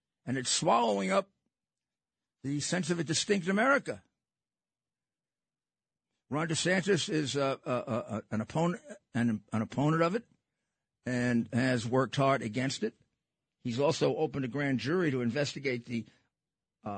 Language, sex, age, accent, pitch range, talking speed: English, male, 50-69, American, 125-160 Hz, 140 wpm